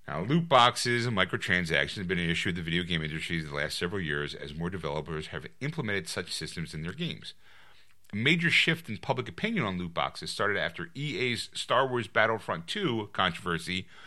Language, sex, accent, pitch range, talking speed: English, male, American, 85-115 Hz, 195 wpm